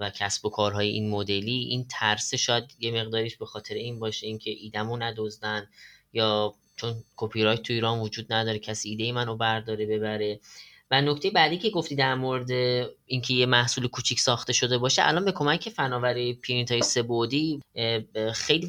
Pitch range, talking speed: 110-145 Hz, 160 wpm